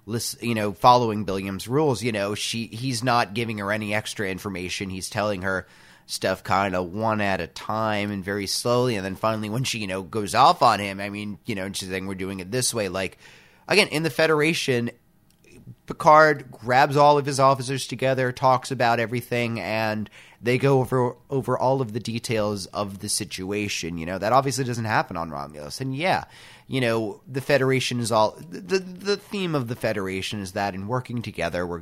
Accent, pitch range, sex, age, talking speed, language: American, 100-130 Hz, male, 30-49, 200 wpm, English